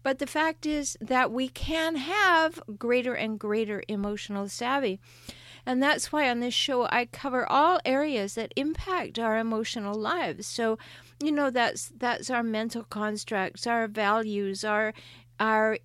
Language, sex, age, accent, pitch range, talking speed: English, female, 50-69, American, 210-250 Hz, 150 wpm